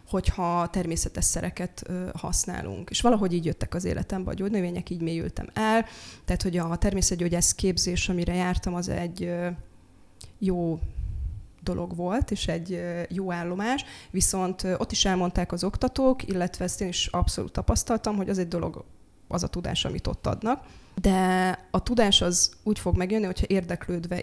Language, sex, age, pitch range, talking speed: Hungarian, female, 20-39, 165-190 Hz, 155 wpm